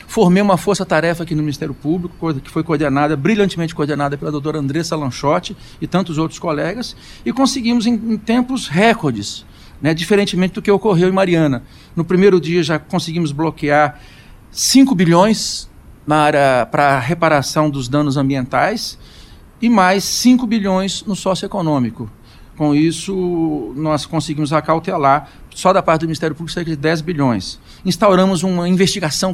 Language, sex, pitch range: Portuguese, male, 150-190 Hz